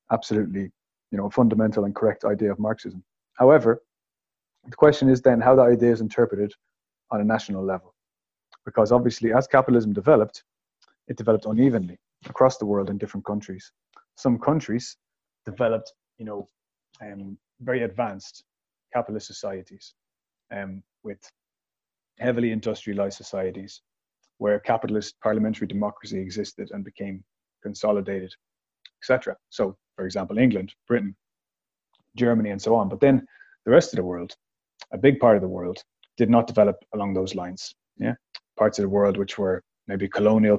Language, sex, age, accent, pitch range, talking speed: English, male, 30-49, Irish, 100-120 Hz, 145 wpm